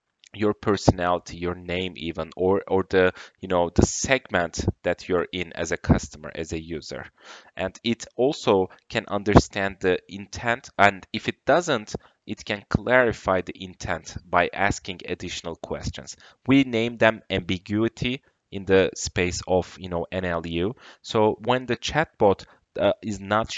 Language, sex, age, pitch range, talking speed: English, male, 30-49, 90-110 Hz, 150 wpm